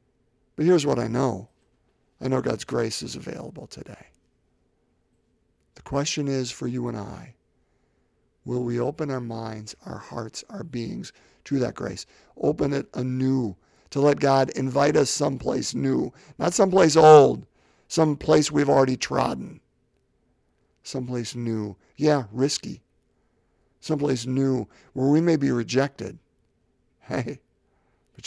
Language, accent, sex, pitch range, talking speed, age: English, American, male, 115-145 Hz, 130 wpm, 50-69